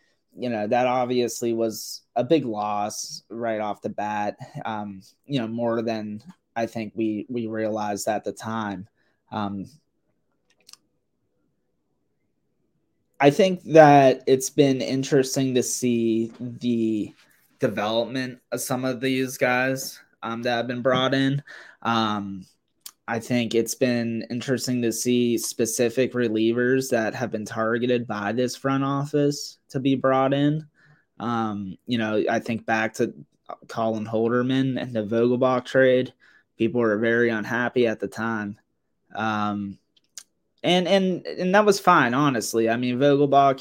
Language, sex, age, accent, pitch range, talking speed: English, male, 20-39, American, 115-130 Hz, 140 wpm